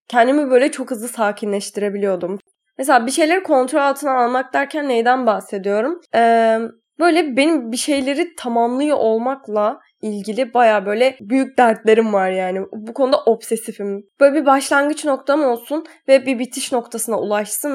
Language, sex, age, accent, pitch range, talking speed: Turkish, female, 10-29, native, 210-275 Hz, 140 wpm